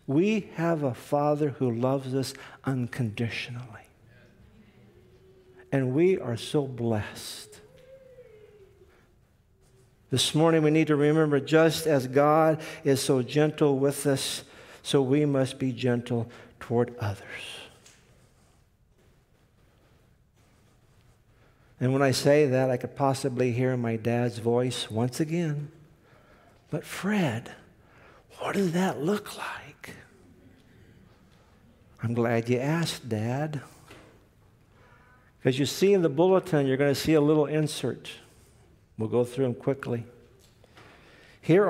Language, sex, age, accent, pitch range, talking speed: English, male, 60-79, American, 120-155 Hz, 115 wpm